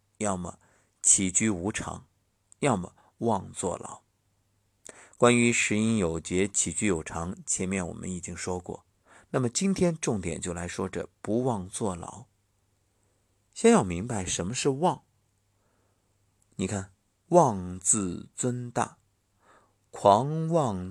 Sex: male